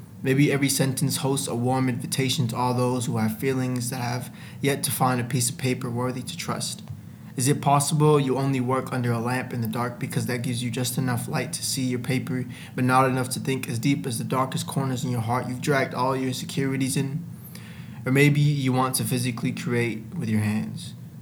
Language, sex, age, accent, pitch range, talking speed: English, male, 20-39, American, 125-135 Hz, 220 wpm